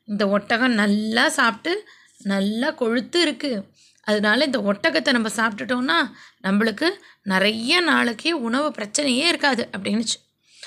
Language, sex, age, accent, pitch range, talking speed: Tamil, female, 20-39, native, 230-295 Hz, 105 wpm